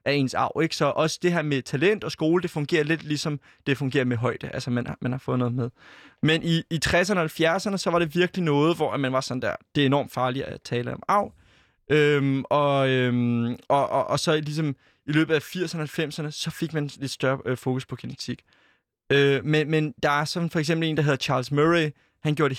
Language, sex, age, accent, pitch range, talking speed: Danish, male, 20-39, native, 135-165 Hz, 240 wpm